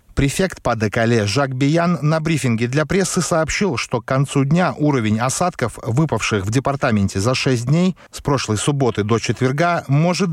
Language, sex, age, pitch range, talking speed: Russian, male, 30-49, 115-175 Hz, 165 wpm